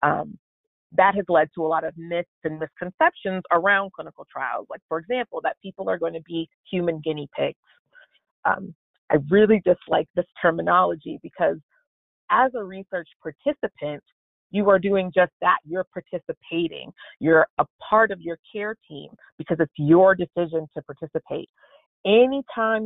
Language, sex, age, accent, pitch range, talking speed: English, female, 30-49, American, 160-220 Hz, 150 wpm